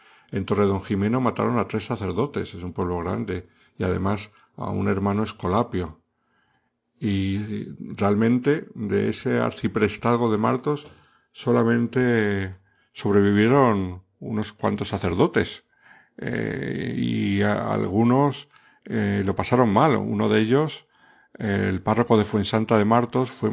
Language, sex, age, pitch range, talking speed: Spanish, male, 50-69, 95-120 Hz, 120 wpm